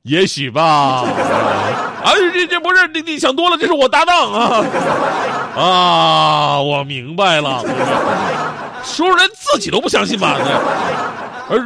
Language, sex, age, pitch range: Chinese, male, 30-49, 130-200 Hz